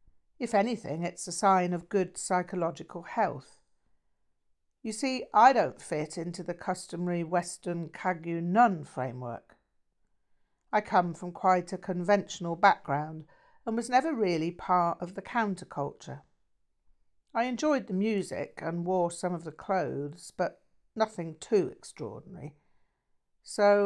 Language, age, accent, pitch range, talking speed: English, 60-79, British, 155-195 Hz, 130 wpm